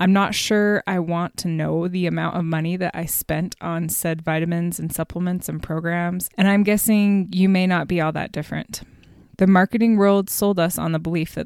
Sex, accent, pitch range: female, American, 160-190 Hz